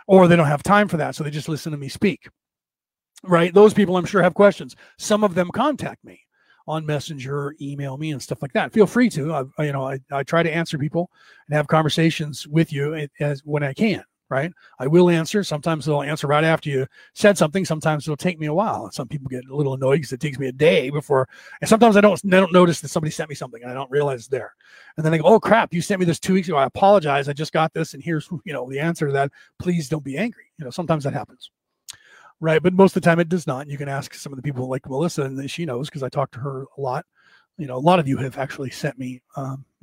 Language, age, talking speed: English, 40-59, 270 wpm